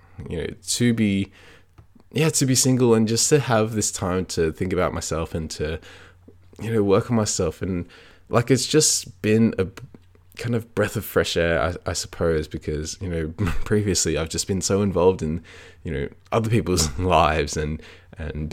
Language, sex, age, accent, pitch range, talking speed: English, male, 20-39, Australian, 85-110 Hz, 185 wpm